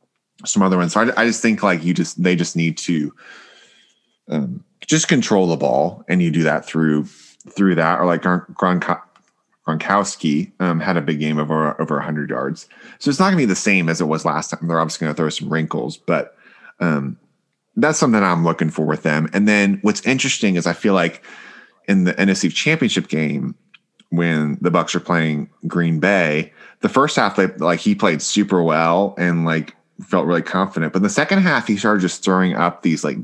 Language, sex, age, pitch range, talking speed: English, male, 30-49, 80-100 Hz, 205 wpm